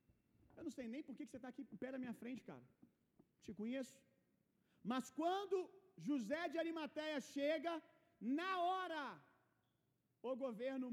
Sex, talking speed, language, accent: male, 150 wpm, Gujarati, Brazilian